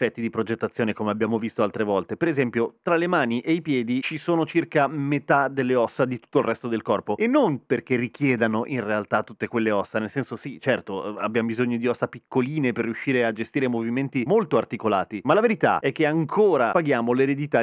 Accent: native